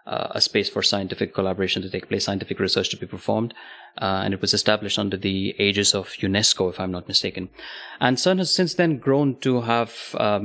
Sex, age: male, 30-49